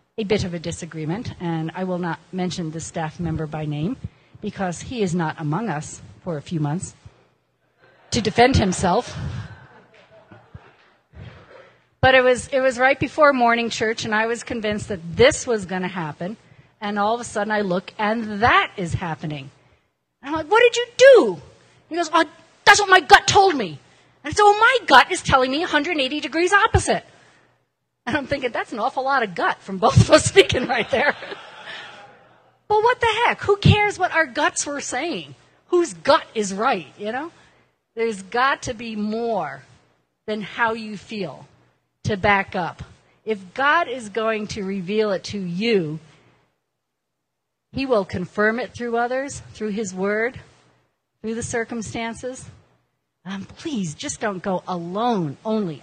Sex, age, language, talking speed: female, 40-59, English, 170 wpm